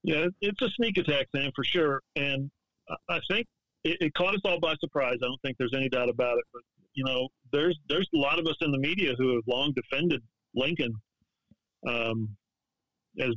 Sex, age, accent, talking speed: male, 40-59, American, 200 wpm